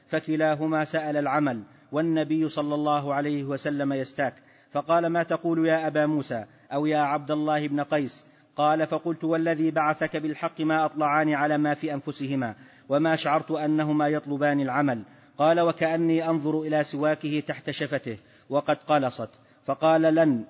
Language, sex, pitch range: Arabic, male, 145-160 Hz